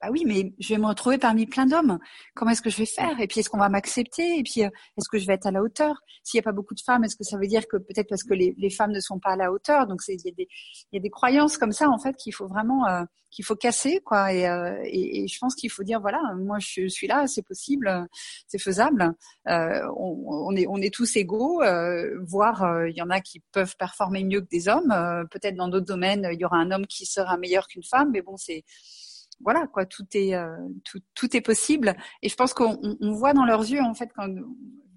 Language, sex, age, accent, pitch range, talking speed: French, female, 40-59, French, 190-245 Hz, 265 wpm